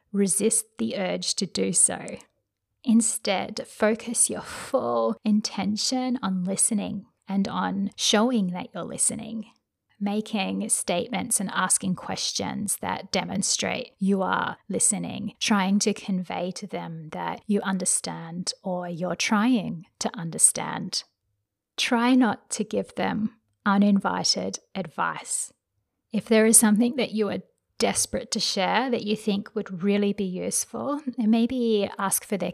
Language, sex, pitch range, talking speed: English, female, 185-225 Hz, 130 wpm